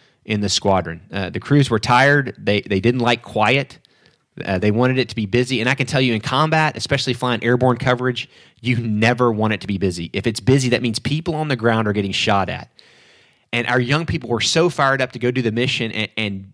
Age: 30-49